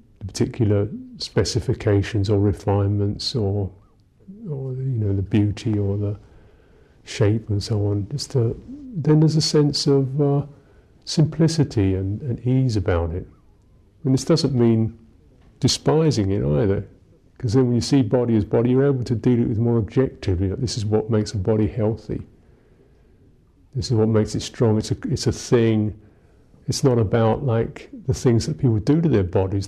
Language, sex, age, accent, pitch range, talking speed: English, male, 50-69, British, 105-135 Hz, 170 wpm